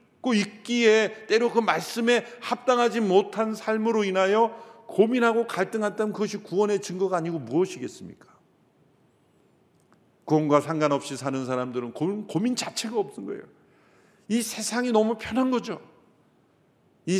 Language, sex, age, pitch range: Korean, male, 50-69, 135-210 Hz